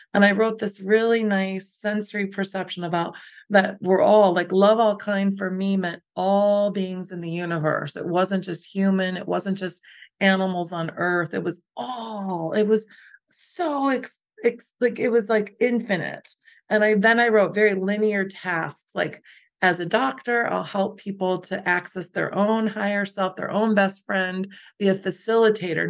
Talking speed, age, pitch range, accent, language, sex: 170 wpm, 30-49, 185-220 Hz, American, English, female